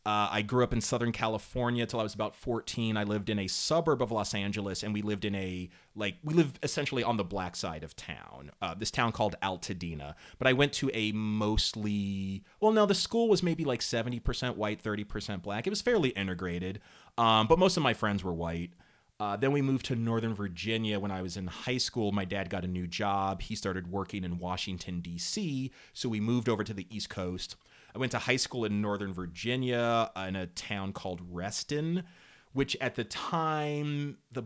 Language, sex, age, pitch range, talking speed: English, male, 30-49, 95-125 Hz, 210 wpm